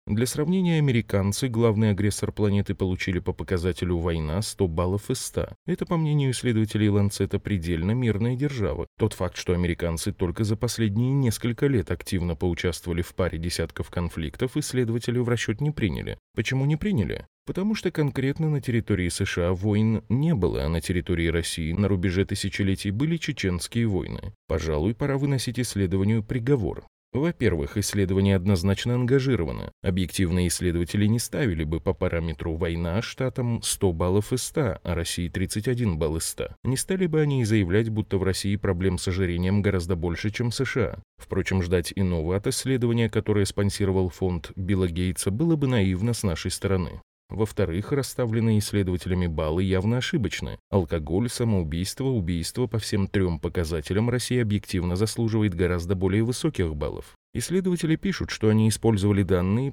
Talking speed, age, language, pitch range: 150 wpm, 20-39, Russian, 90-120 Hz